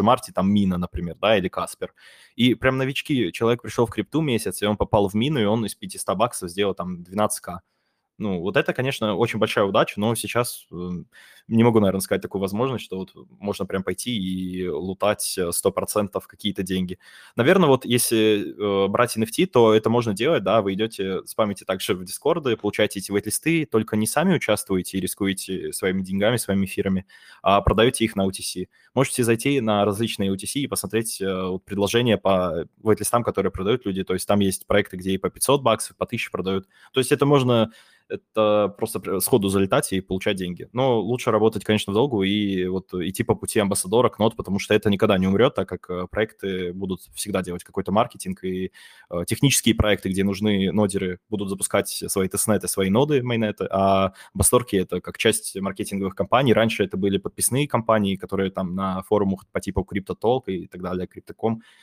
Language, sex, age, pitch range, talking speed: Russian, male, 20-39, 95-110 Hz, 185 wpm